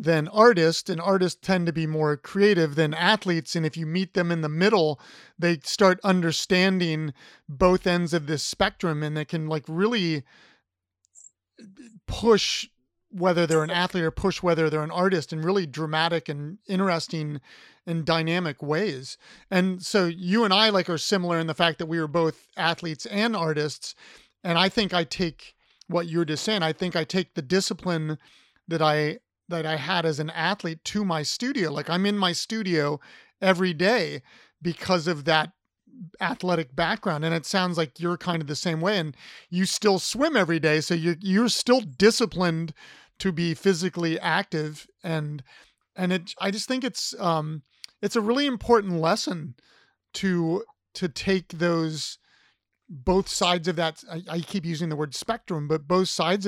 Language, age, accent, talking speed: English, 30-49, American, 175 wpm